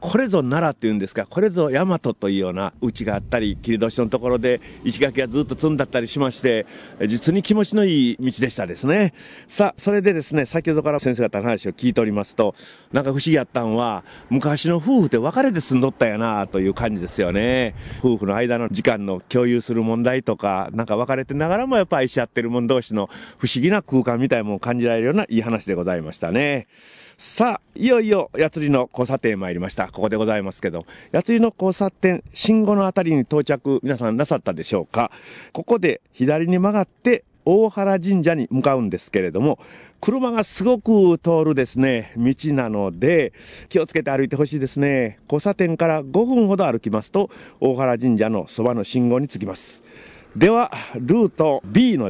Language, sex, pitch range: Japanese, male, 115-170 Hz